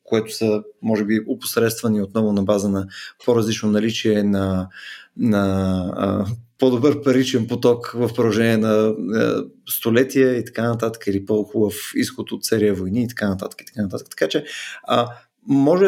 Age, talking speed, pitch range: 20-39, 155 wpm, 110-135 Hz